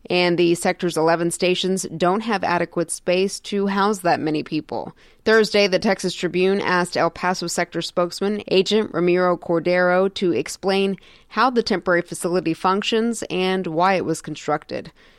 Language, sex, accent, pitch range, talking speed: English, female, American, 175-205 Hz, 150 wpm